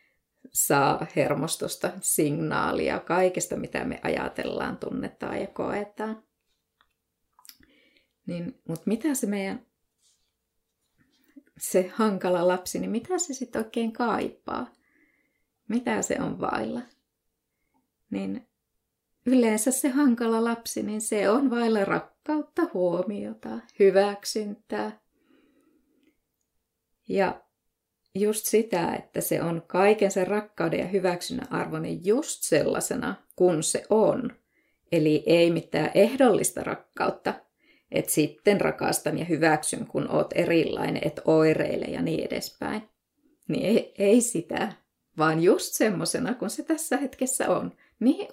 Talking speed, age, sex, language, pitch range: 110 wpm, 20-39, female, Finnish, 180-255 Hz